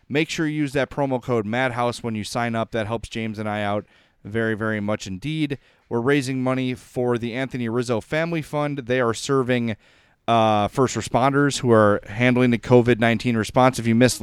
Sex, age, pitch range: male, 30-49, 110-140 Hz